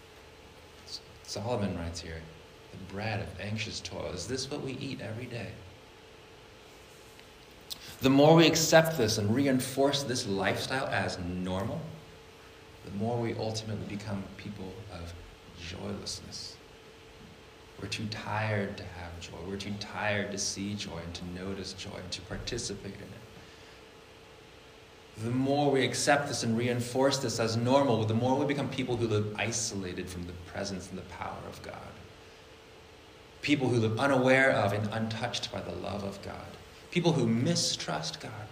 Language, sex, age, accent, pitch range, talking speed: English, male, 30-49, American, 95-120 Hz, 150 wpm